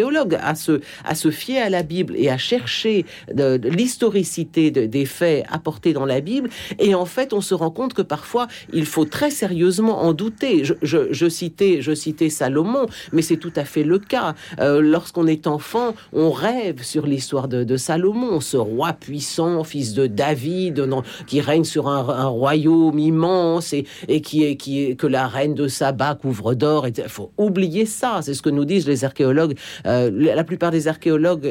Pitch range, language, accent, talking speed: 140-180 Hz, French, French, 200 wpm